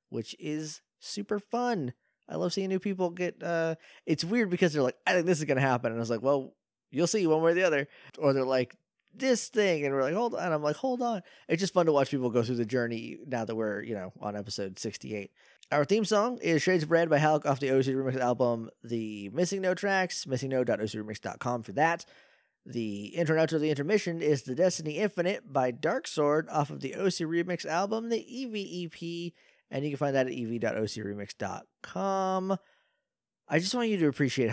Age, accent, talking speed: 20-39, American, 215 wpm